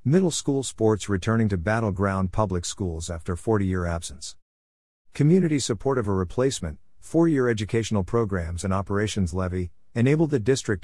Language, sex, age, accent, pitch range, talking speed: English, male, 50-69, American, 90-115 Hz, 140 wpm